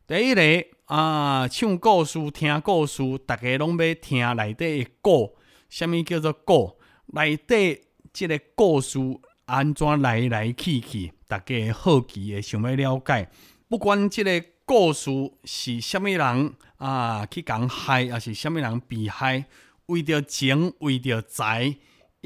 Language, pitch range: Chinese, 115-155 Hz